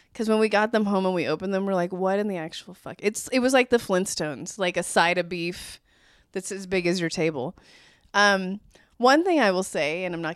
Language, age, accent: English, 20-39, American